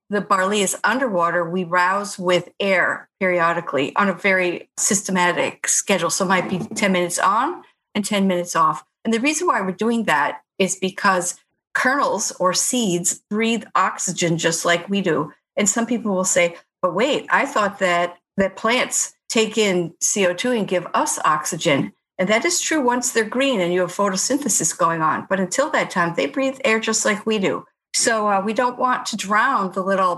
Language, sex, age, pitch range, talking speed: English, female, 50-69, 180-220 Hz, 190 wpm